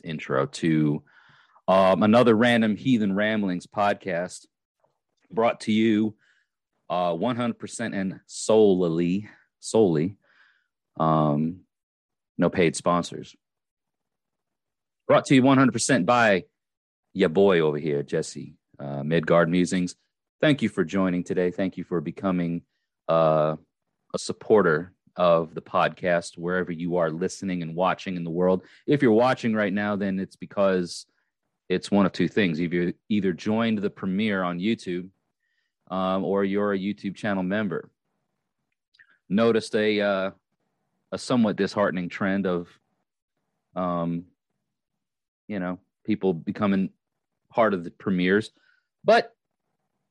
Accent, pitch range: American, 85-105 Hz